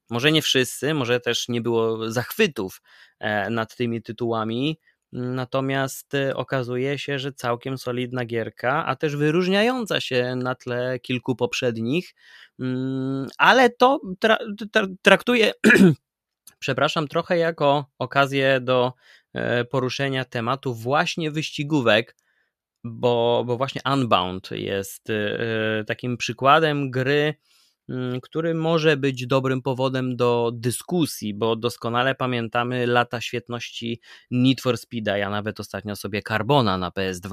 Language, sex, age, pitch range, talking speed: Polish, male, 20-39, 110-135 Hz, 110 wpm